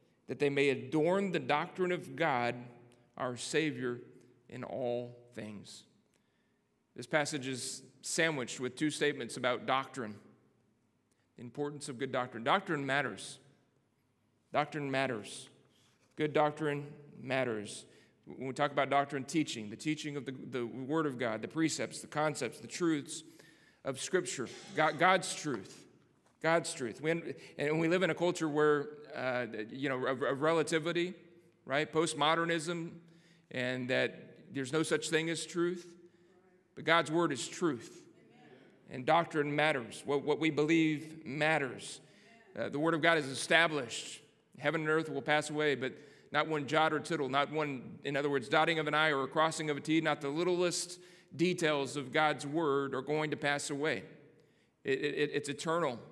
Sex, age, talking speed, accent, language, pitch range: male, 40-59, 155 wpm, American, English, 135-160 Hz